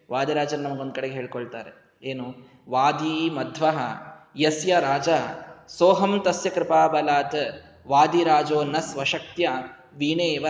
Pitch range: 150-190 Hz